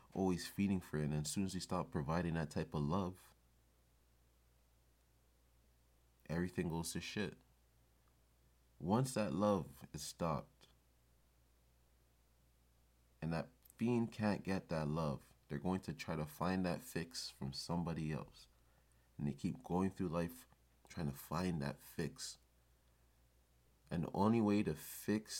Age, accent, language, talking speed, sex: 30-49, American, English, 140 wpm, male